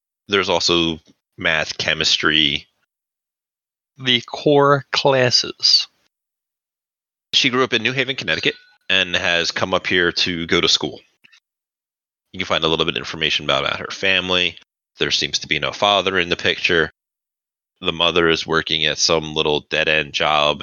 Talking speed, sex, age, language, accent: 150 wpm, male, 30-49, English, American